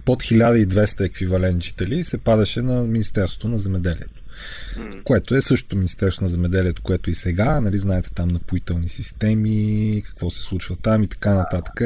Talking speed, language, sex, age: 150 wpm, Bulgarian, male, 30-49